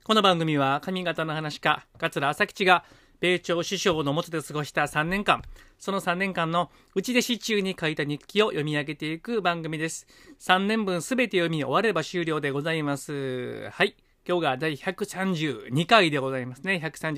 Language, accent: Japanese, native